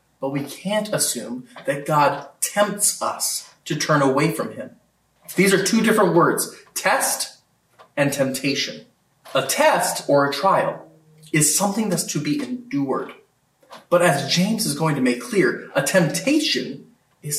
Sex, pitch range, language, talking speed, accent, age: male, 140-195 Hz, English, 150 wpm, American, 30-49